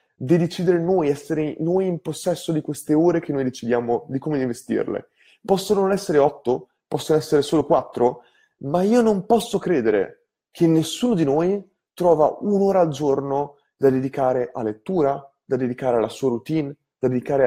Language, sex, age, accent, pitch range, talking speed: Italian, male, 20-39, native, 120-175 Hz, 165 wpm